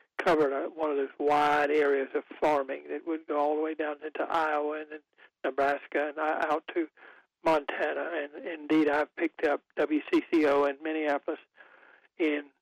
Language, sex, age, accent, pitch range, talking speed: English, male, 60-79, American, 145-180 Hz, 160 wpm